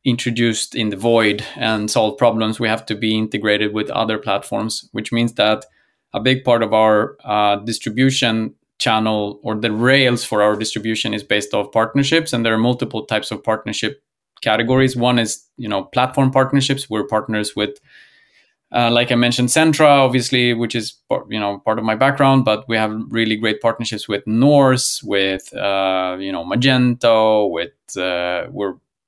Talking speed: 170 wpm